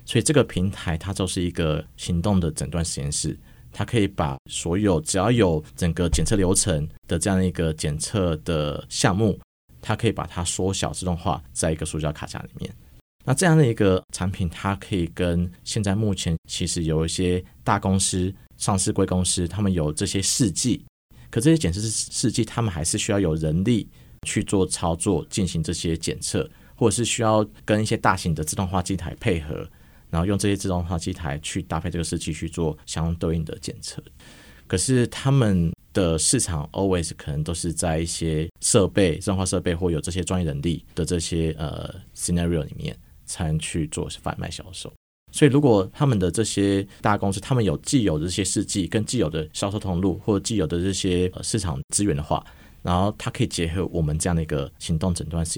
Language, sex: Chinese, male